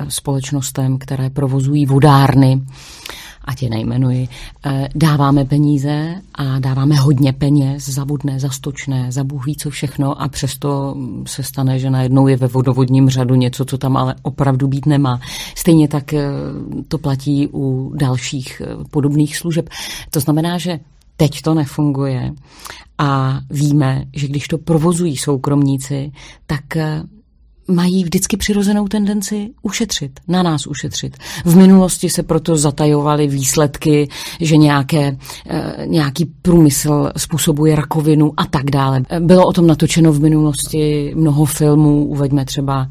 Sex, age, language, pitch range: female, 40-59, Czech, 135-160 Hz